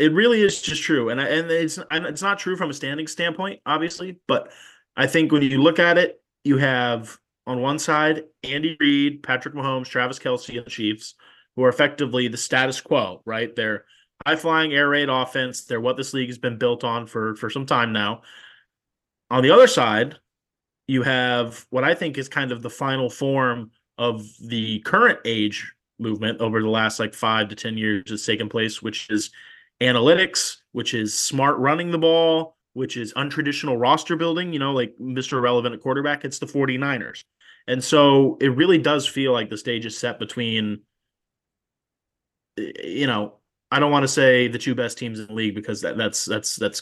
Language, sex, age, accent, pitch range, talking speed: English, male, 30-49, American, 115-145 Hz, 190 wpm